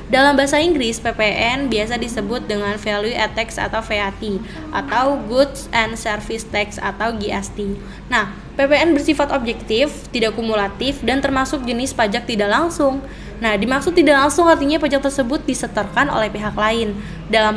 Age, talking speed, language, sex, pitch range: 20-39, 145 wpm, Indonesian, female, 210-275 Hz